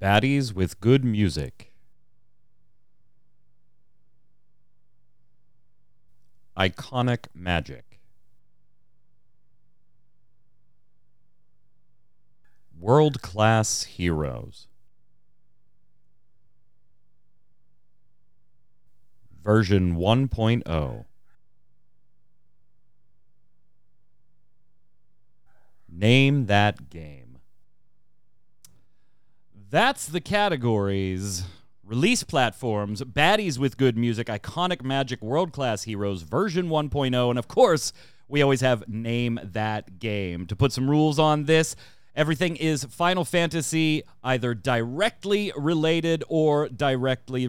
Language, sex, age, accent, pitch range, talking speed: English, male, 40-59, American, 90-140 Hz, 65 wpm